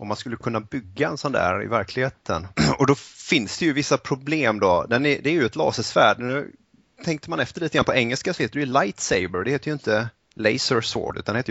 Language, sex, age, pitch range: Swedish, male, 30-49, 95-125 Hz